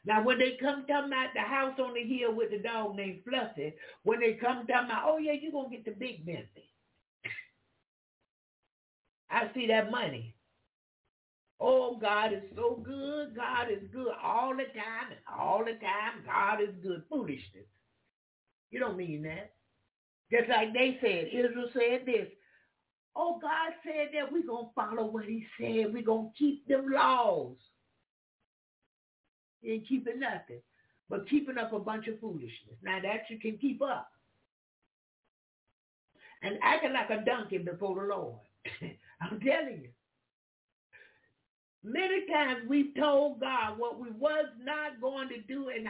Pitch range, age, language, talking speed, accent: 210-275 Hz, 60-79, English, 155 wpm, American